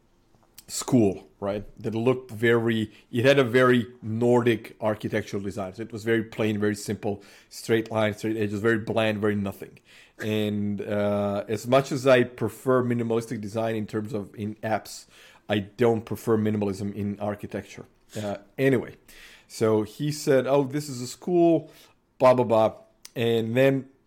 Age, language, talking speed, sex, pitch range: 30-49, English, 155 wpm, male, 105-125 Hz